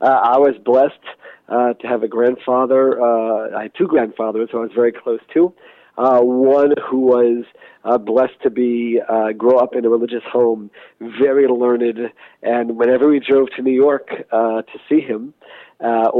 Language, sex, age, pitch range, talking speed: English, male, 50-69, 110-130 Hz, 185 wpm